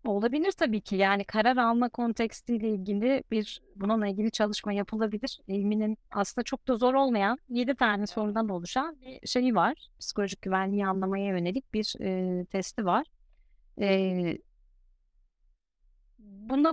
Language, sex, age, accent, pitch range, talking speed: Turkish, female, 30-49, native, 185-235 Hz, 130 wpm